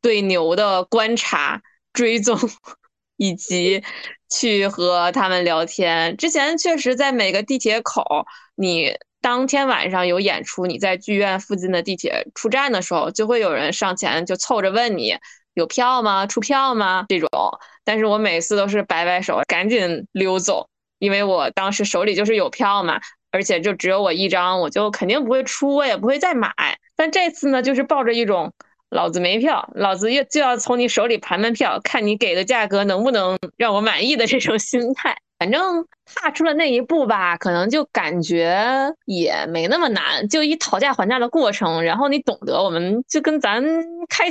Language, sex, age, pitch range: Chinese, female, 20-39, 185-265 Hz